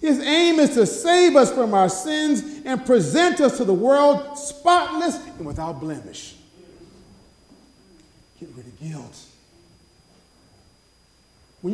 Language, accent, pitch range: English, American, 220-290 Hz